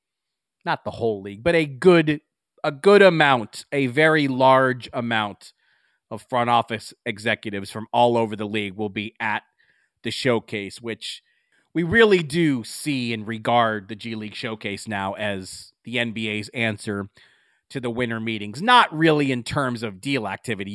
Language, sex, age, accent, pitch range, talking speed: English, male, 30-49, American, 105-130 Hz, 160 wpm